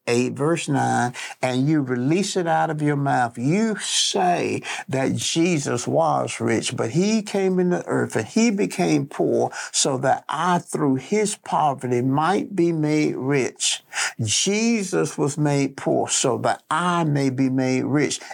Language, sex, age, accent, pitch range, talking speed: English, male, 60-79, American, 125-165 Hz, 155 wpm